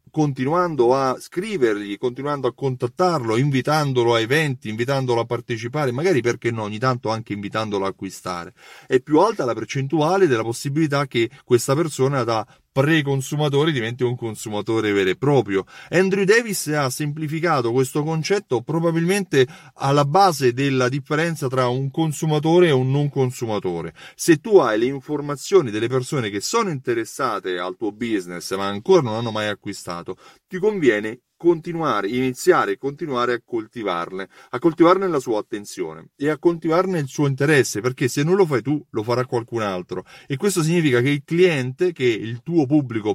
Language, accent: Italian, native